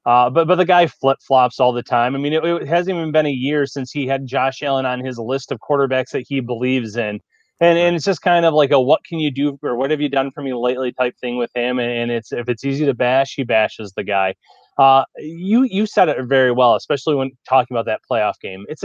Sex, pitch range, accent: male, 120-150 Hz, American